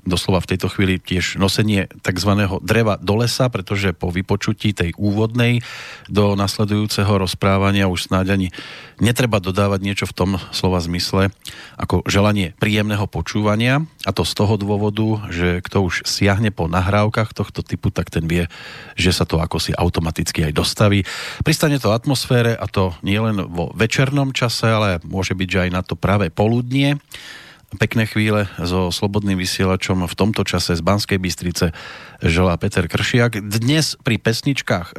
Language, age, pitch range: Slovak, 40-59, 90-110 Hz